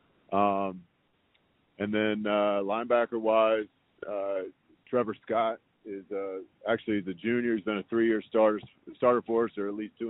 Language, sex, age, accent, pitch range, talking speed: English, male, 40-59, American, 100-110 Hz, 155 wpm